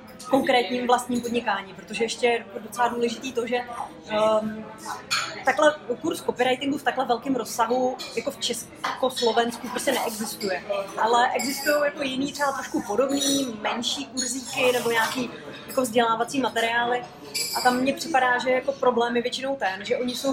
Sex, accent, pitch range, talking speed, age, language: female, native, 230-265 Hz, 150 wpm, 30-49, Czech